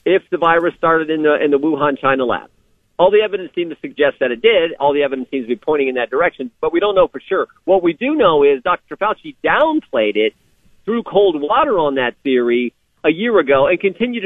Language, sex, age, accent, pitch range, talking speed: English, male, 50-69, American, 140-210 Hz, 235 wpm